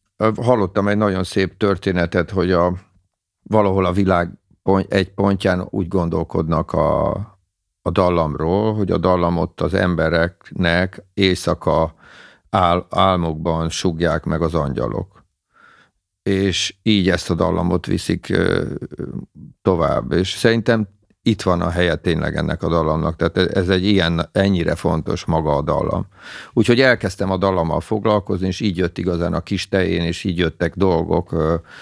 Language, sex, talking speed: Hungarian, male, 130 wpm